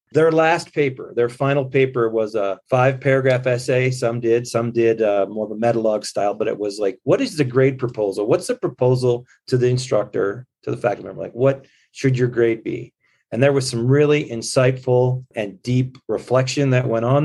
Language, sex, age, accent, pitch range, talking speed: English, male, 30-49, American, 115-140 Hz, 200 wpm